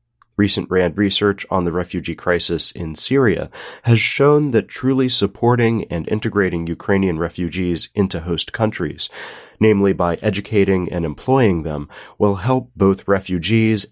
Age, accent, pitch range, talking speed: 30-49, American, 85-110 Hz, 135 wpm